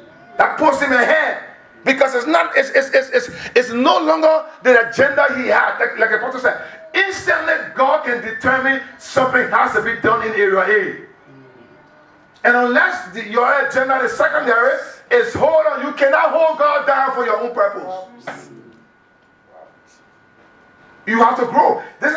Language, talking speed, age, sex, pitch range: English, 150 wpm, 50-69, male, 250-325 Hz